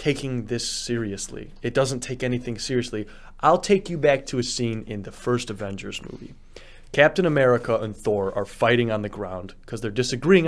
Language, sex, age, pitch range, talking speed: English, male, 30-49, 120-180 Hz, 185 wpm